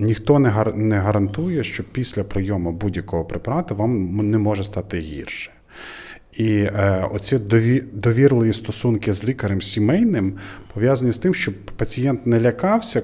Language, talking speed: Ukrainian, 145 wpm